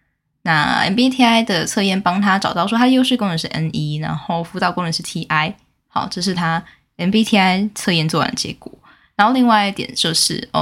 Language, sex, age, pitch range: Chinese, female, 10-29, 160-215 Hz